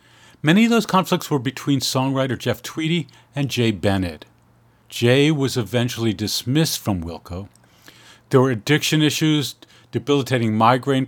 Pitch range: 115-150 Hz